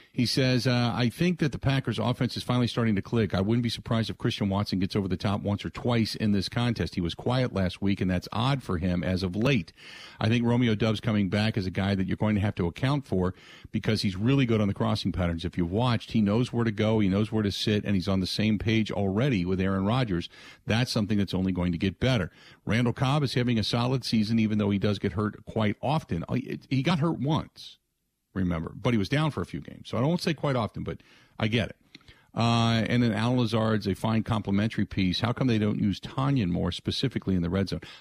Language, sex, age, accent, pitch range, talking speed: English, male, 50-69, American, 100-125 Hz, 250 wpm